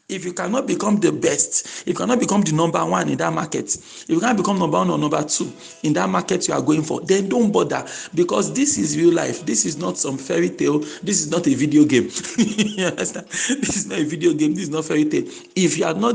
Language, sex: English, male